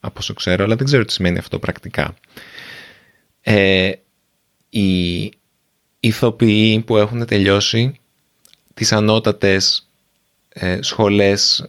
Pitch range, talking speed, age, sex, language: 100-130 Hz, 110 wpm, 30-49, male, Greek